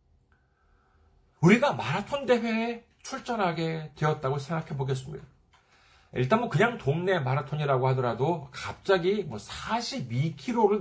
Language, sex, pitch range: Korean, male, 130-210 Hz